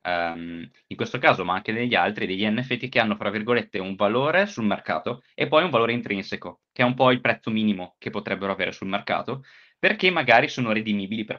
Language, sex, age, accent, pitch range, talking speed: Italian, male, 20-39, native, 95-115 Hz, 210 wpm